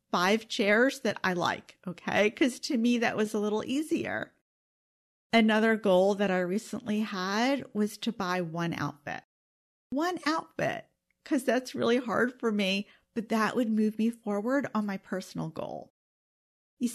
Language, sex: English, female